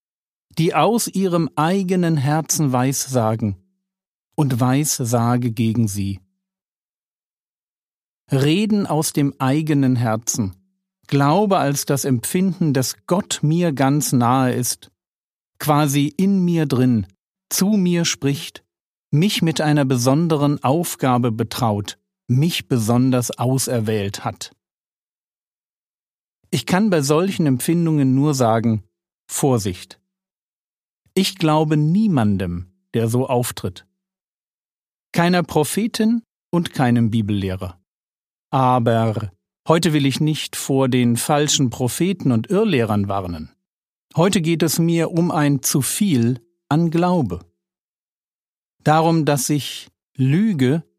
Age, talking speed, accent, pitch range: 50-69, 105 wpm, German, 120-170 Hz